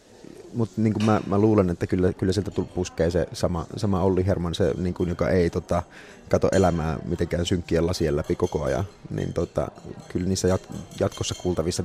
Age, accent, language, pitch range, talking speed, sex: 30-49, Finnish, English, 85-110 Hz, 180 wpm, male